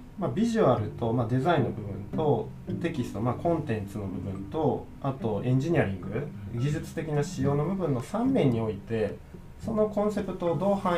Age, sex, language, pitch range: 20-39, male, Japanese, 105-155 Hz